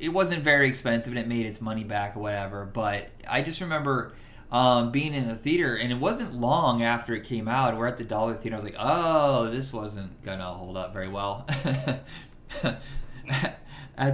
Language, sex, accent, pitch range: English, male, American, 120-160 Hz